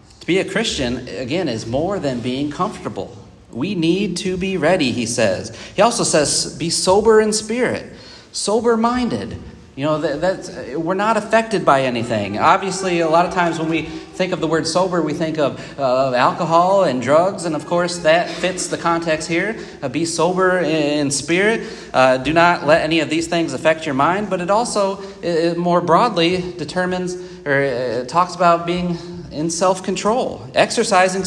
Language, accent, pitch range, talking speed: English, American, 140-185 Hz, 165 wpm